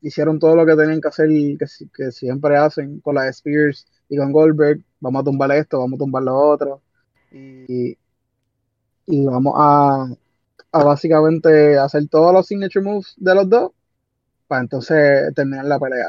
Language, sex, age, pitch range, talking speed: Spanish, male, 20-39, 135-170 Hz, 175 wpm